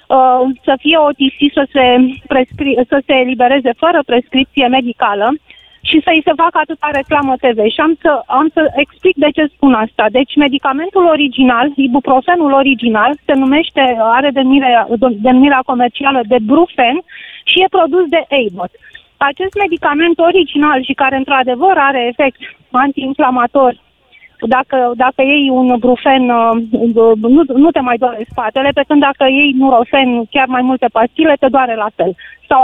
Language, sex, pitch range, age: Romanian, female, 250-305 Hz, 30-49